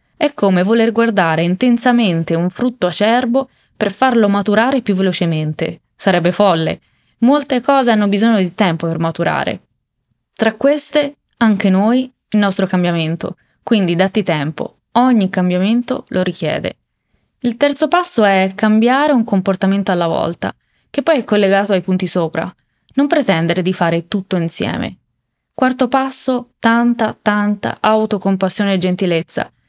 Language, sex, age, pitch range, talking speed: Italian, female, 20-39, 180-235 Hz, 135 wpm